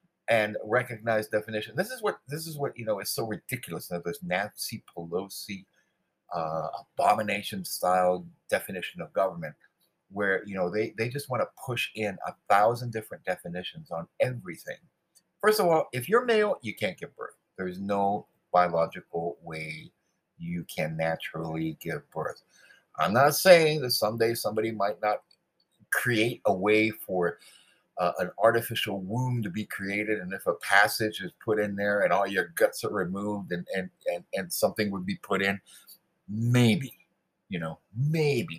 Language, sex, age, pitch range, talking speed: English, male, 50-69, 95-140 Hz, 165 wpm